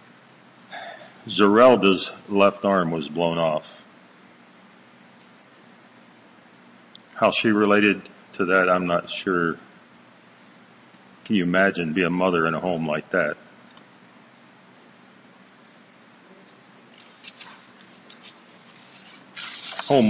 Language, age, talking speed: English, 50-69, 80 wpm